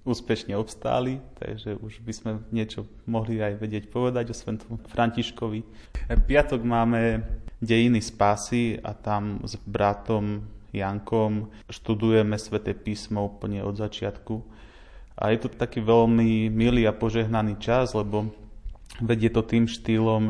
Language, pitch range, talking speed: Slovak, 105-115 Hz, 135 wpm